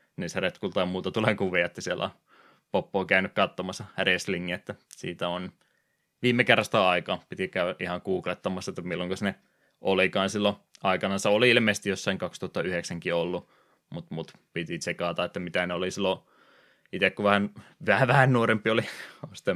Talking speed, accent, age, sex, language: 165 wpm, native, 20-39, male, Finnish